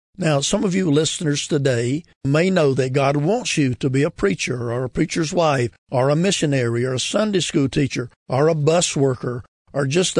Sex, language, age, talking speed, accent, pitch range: male, English, 50-69, 200 wpm, American, 130-170 Hz